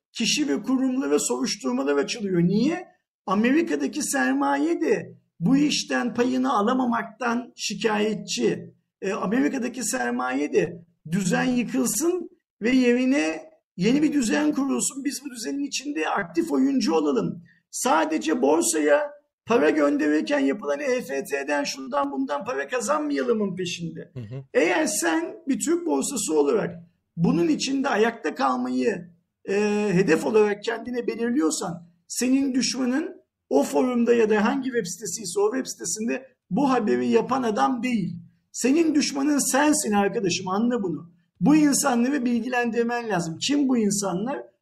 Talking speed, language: 120 wpm, Turkish